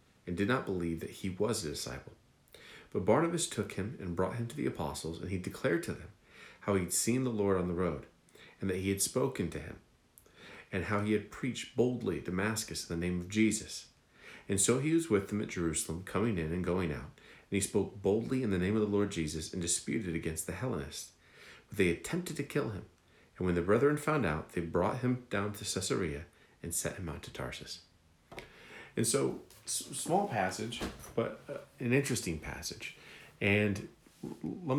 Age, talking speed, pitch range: 40-59, 205 wpm, 85-110 Hz